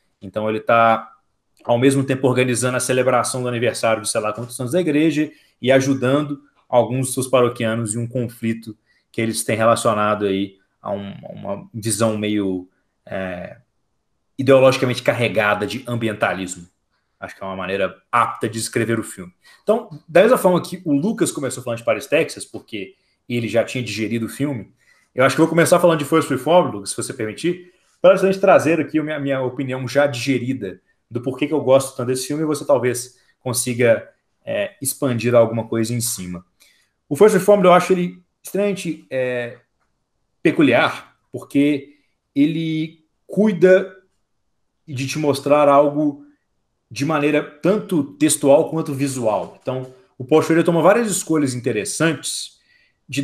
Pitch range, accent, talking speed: 115-160 Hz, Brazilian, 165 wpm